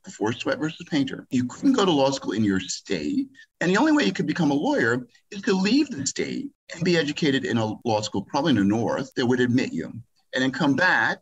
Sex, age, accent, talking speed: male, 50-69, American, 245 wpm